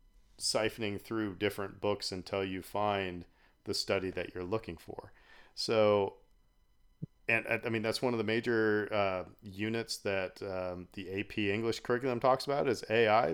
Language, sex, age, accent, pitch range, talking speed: English, male, 40-59, American, 95-110 Hz, 155 wpm